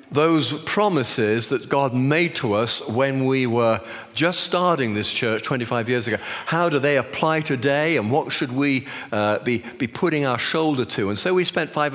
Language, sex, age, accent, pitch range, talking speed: English, male, 50-69, British, 120-155 Hz, 190 wpm